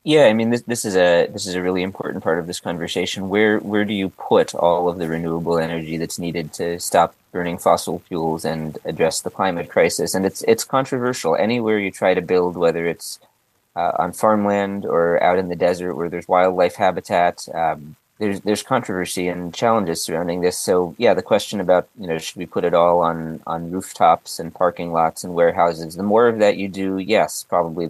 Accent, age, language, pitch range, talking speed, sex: American, 30-49, English, 85-95 Hz, 210 wpm, male